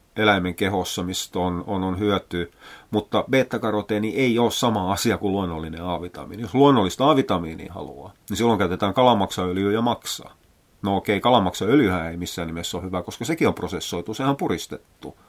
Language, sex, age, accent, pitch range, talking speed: Finnish, male, 30-49, native, 85-105 Hz, 160 wpm